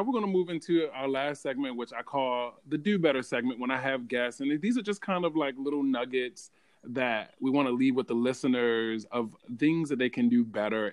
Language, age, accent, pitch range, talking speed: English, 20-39, American, 110-140 Hz, 235 wpm